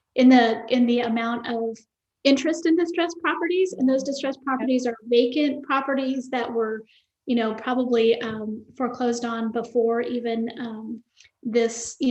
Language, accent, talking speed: English, American, 150 wpm